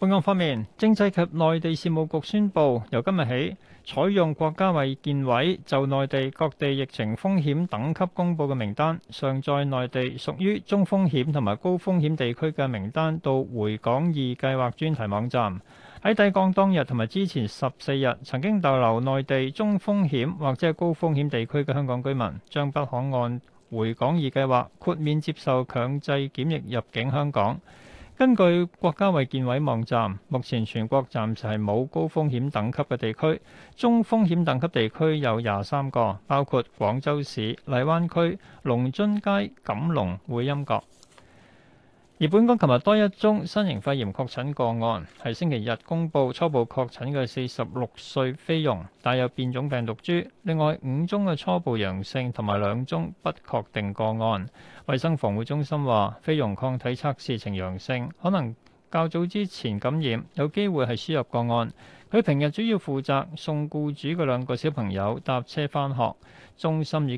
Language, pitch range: Chinese, 120-160 Hz